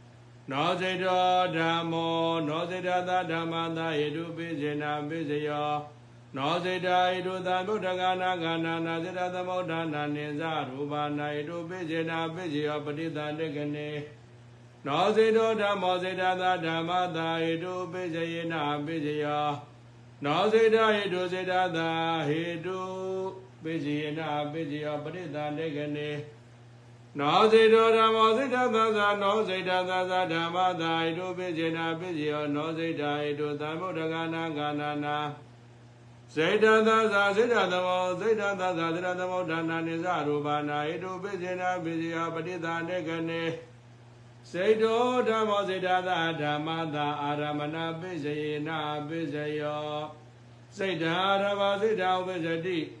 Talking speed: 40 wpm